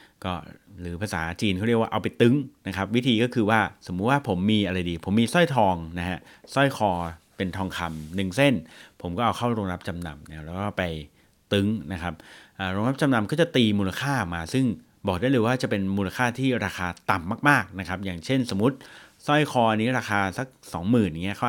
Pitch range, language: 90-115 Hz, Thai